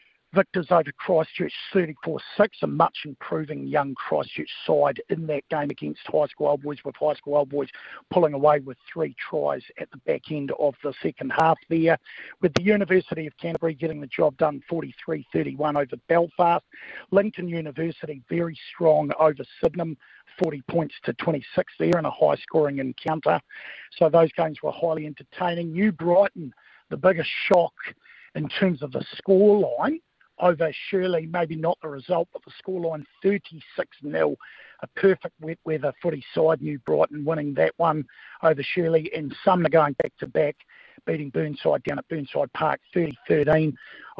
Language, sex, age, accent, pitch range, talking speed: English, male, 50-69, Australian, 145-175 Hz, 150 wpm